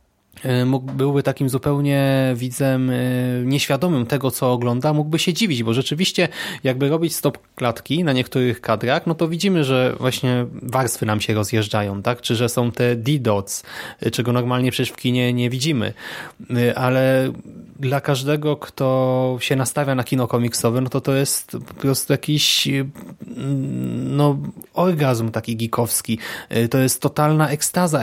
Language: Polish